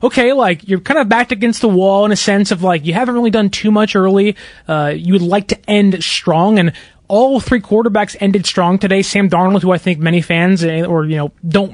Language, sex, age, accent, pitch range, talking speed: English, male, 20-39, American, 175-225 Hz, 235 wpm